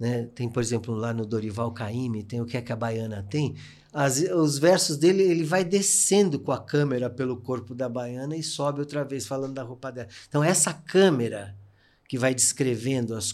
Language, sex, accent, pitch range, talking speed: Portuguese, male, Brazilian, 125-160 Hz, 200 wpm